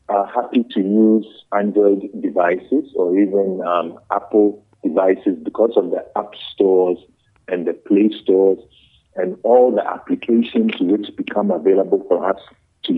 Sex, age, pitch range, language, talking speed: male, 50-69, 100-140 Hz, English, 140 wpm